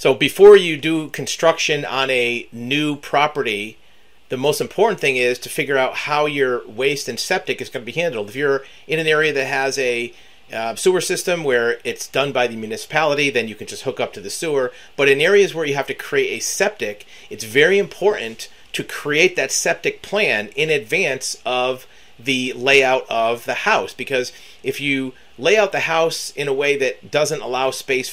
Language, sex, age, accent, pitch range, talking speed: English, male, 40-59, American, 130-210 Hz, 200 wpm